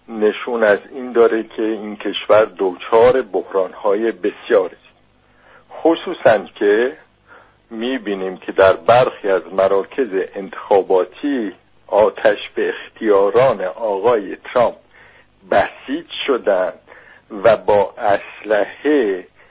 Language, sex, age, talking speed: English, male, 60-79, 90 wpm